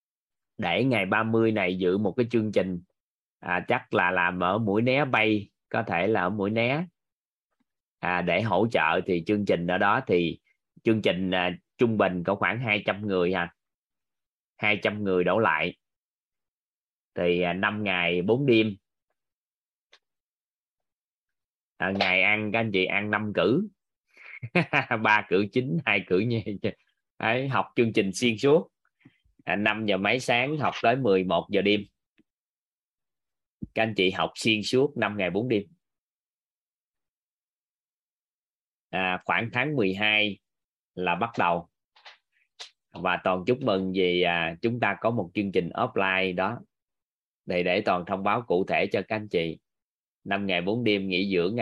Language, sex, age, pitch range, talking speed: Vietnamese, male, 20-39, 90-110 Hz, 155 wpm